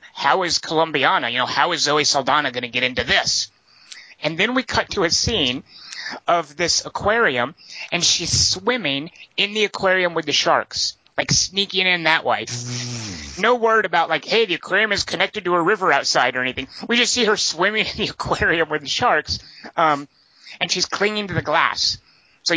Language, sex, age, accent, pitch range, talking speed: English, male, 30-49, American, 125-170 Hz, 185 wpm